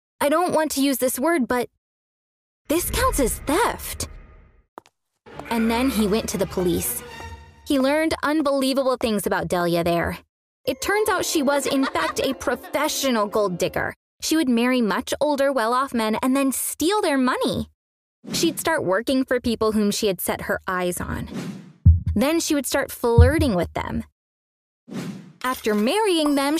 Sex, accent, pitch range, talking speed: female, American, 190-275 Hz, 160 wpm